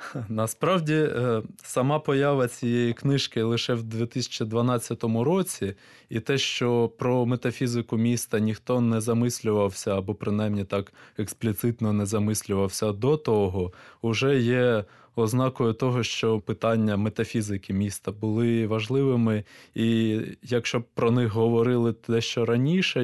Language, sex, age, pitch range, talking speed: Ukrainian, male, 20-39, 110-130 Hz, 115 wpm